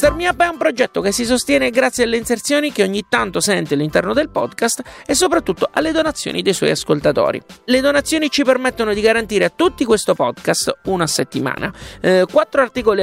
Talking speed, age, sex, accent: 190 wpm, 30-49, male, native